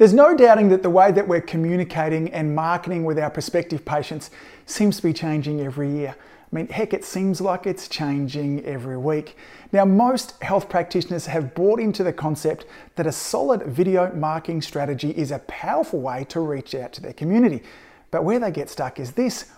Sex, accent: male, Australian